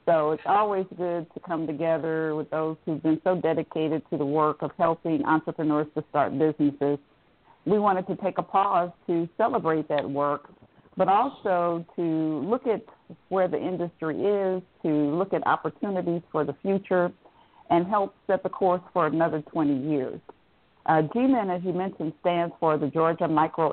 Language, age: English, 50-69